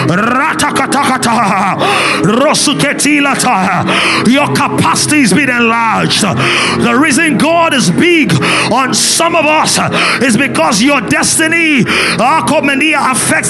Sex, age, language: male, 30-49, English